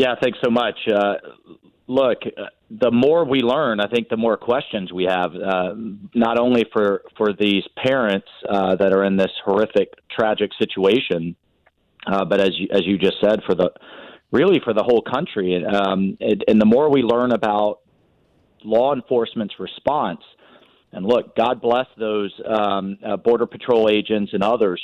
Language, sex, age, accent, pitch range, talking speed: English, male, 40-59, American, 100-120 Hz, 170 wpm